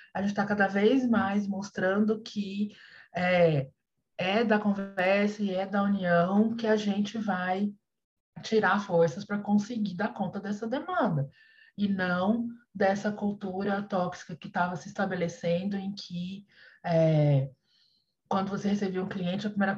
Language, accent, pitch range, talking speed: Portuguese, Brazilian, 195-235 Hz, 145 wpm